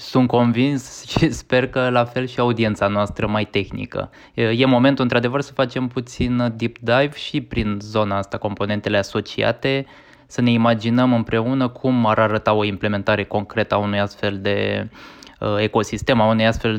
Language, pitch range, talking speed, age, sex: Romanian, 110-135 Hz, 155 wpm, 20-39, male